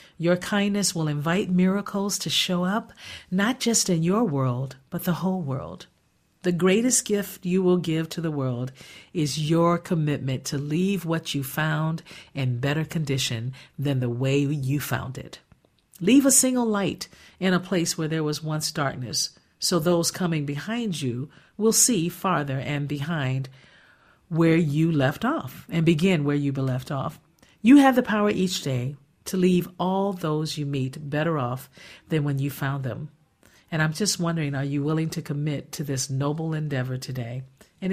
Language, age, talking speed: English, 50-69, 170 wpm